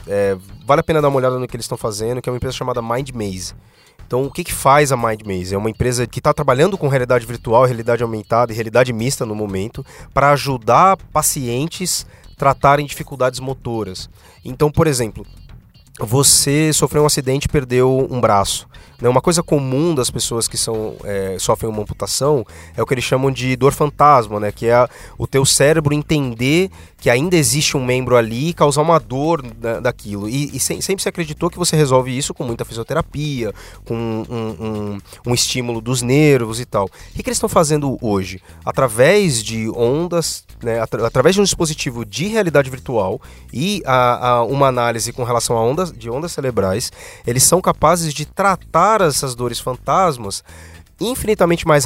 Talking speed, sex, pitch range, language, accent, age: 175 wpm, male, 115-150 Hz, Portuguese, Brazilian, 20-39